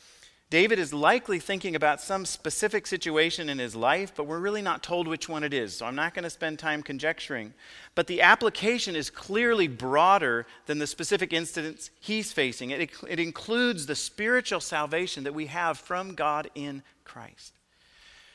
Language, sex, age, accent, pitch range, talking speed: English, male, 40-59, American, 140-180 Hz, 175 wpm